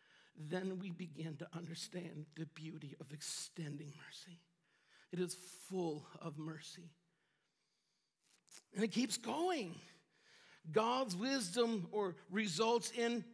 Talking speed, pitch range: 110 wpm, 180-245 Hz